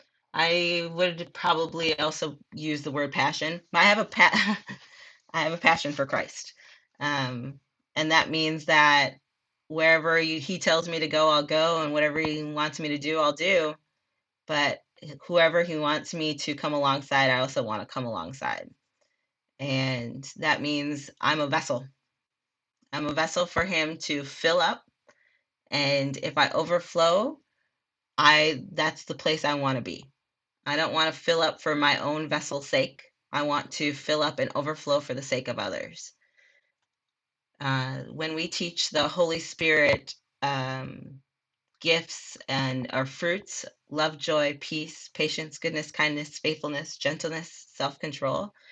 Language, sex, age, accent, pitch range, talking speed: English, female, 30-49, American, 145-170 Hz, 155 wpm